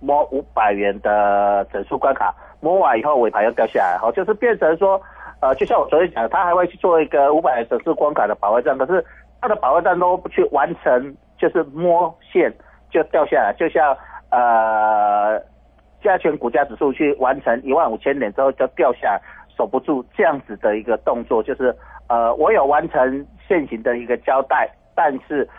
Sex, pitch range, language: male, 110-175 Hz, Chinese